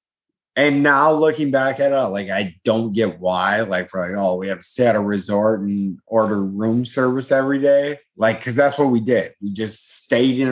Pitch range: 110-140 Hz